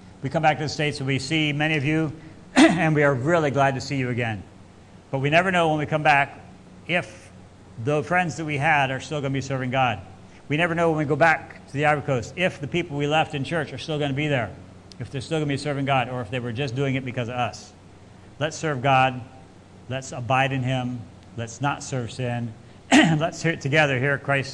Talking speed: 245 wpm